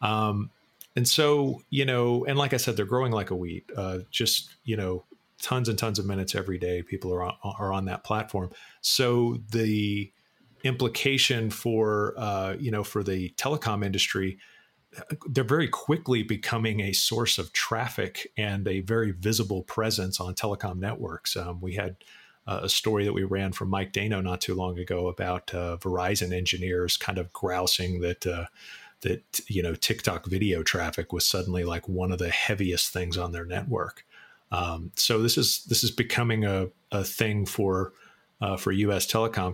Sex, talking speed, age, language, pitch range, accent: male, 175 wpm, 40-59, English, 95-120 Hz, American